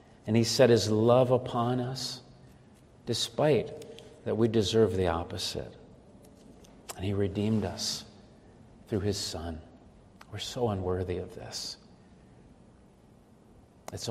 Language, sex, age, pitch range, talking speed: English, male, 50-69, 100-125 Hz, 110 wpm